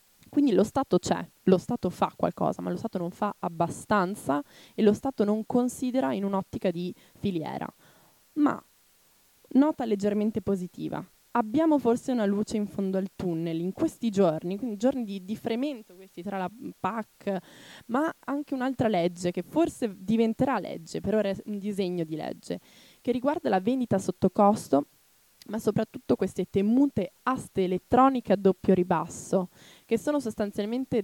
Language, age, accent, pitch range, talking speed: Italian, 20-39, native, 180-225 Hz, 155 wpm